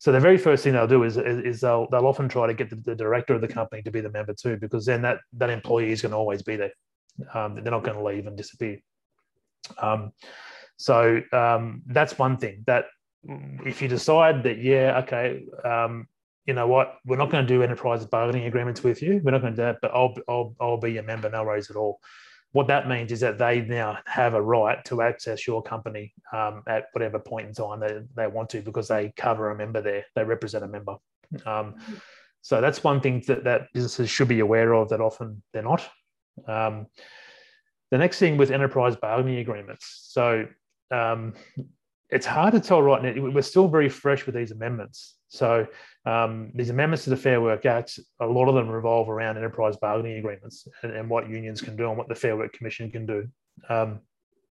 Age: 30-49